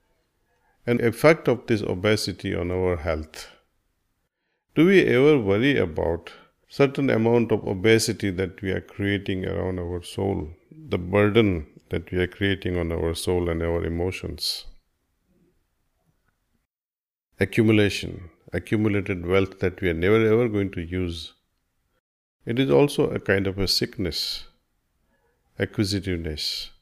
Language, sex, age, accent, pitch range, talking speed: Hindi, male, 50-69, native, 85-110 Hz, 125 wpm